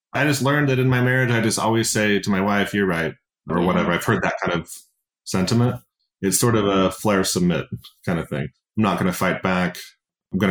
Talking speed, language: 235 wpm, English